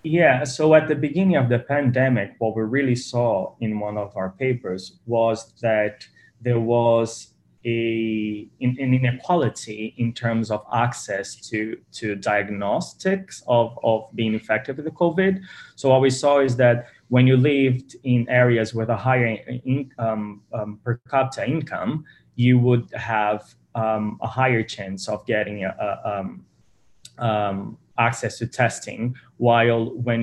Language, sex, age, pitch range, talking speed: Italian, male, 20-39, 105-125 Hz, 150 wpm